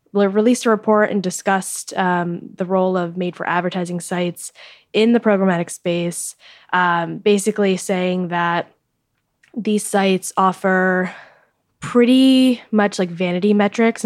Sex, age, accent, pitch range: female, 10-29, American, 170-200 Hz